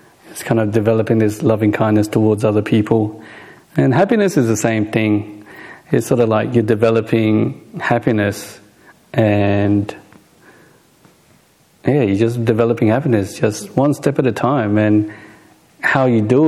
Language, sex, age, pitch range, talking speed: English, male, 40-59, 110-125 Hz, 140 wpm